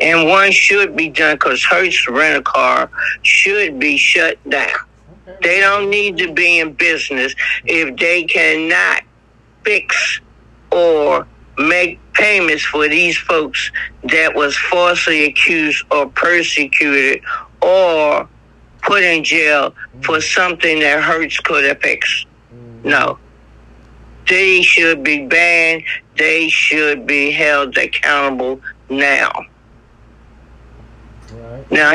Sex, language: male, English